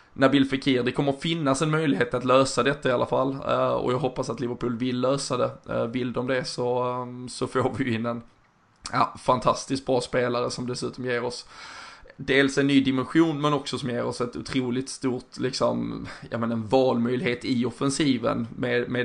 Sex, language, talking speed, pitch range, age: male, Swedish, 180 wpm, 120-130 Hz, 20-39